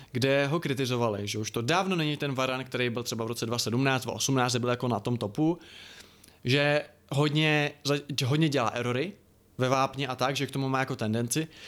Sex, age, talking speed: male, 20-39, 190 wpm